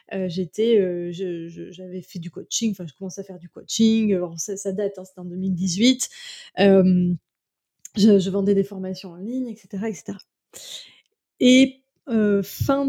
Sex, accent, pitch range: female, French, 200-235 Hz